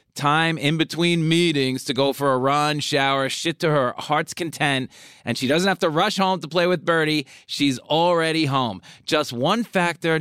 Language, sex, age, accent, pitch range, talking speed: English, male, 30-49, American, 155-215 Hz, 190 wpm